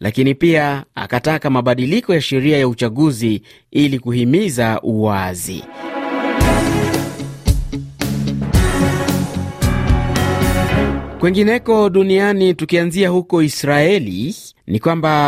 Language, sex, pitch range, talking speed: Swahili, male, 125-160 Hz, 70 wpm